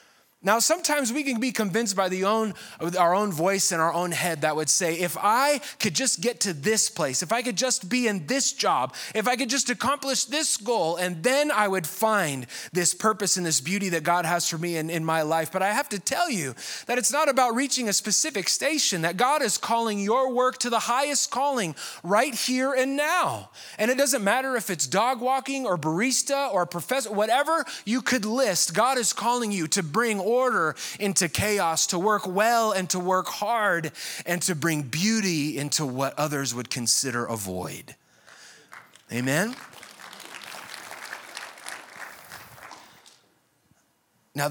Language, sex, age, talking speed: English, male, 20-39, 180 wpm